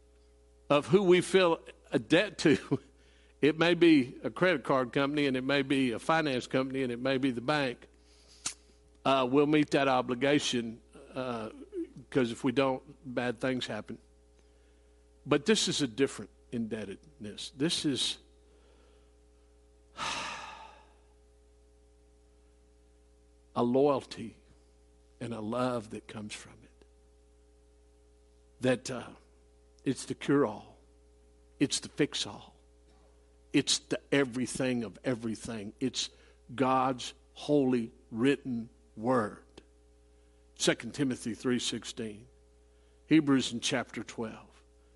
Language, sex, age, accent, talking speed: English, male, 60-79, American, 110 wpm